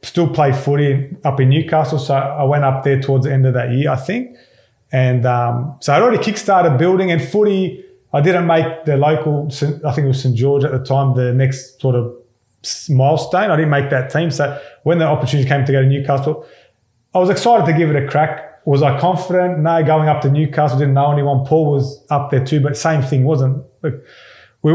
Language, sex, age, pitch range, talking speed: English, male, 30-49, 135-165 Hz, 220 wpm